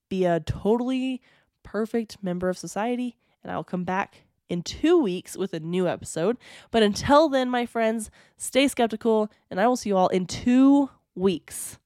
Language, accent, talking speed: English, American, 170 wpm